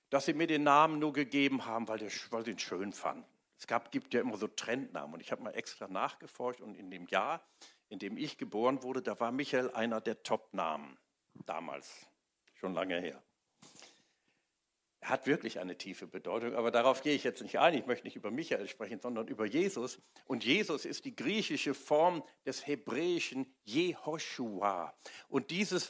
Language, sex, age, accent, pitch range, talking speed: German, male, 50-69, German, 130-170 Hz, 180 wpm